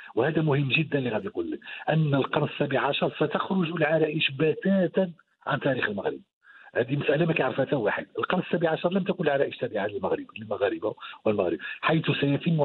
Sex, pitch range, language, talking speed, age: male, 135-170 Hz, Arabic, 165 wpm, 50-69